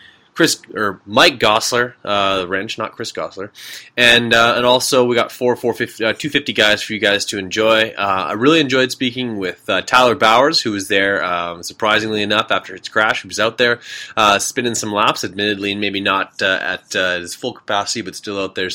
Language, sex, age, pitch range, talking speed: English, male, 20-39, 100-125 Hz, 210 wpm